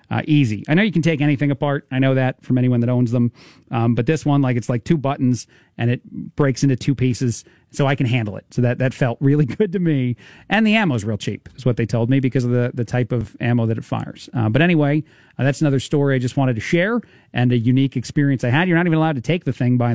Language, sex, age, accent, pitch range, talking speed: English, male, 40-59, American, 125-150 Hz, 280 wpm